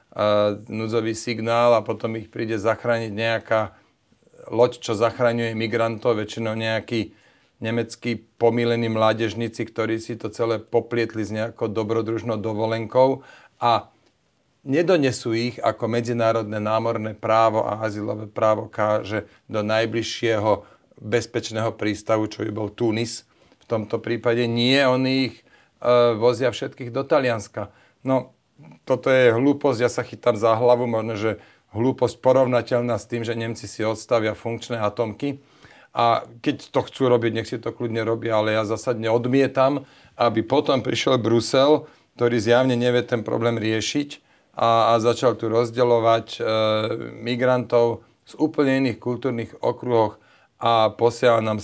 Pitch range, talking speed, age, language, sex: 110-120 Hz, 135 wpm, 40-59, Slovak, male